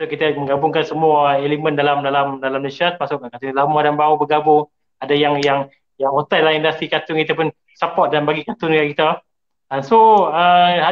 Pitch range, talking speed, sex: 150-195 Hz, 185 wpm, male